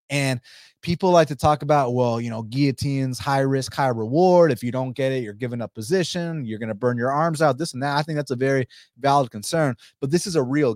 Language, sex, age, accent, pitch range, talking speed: English, male, 20-39, American, 120-150 Hz, 250 wpm